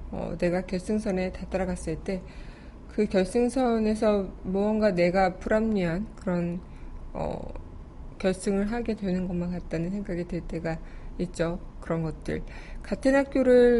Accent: native